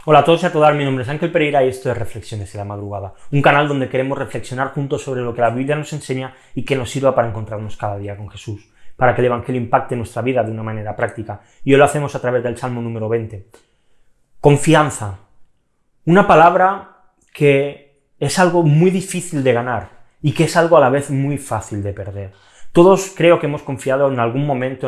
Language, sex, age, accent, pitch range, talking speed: Spanish, male, 20-39, Spanish, 120-145 Hz, 220 wpm